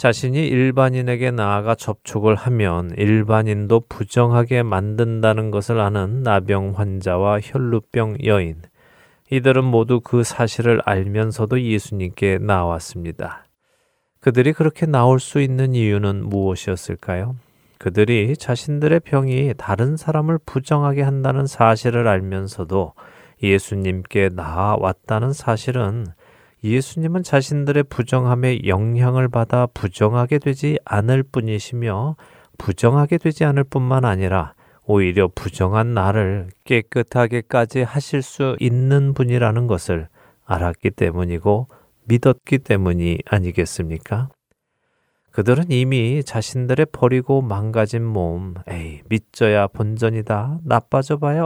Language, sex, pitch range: Korean, male, 100-130 Hz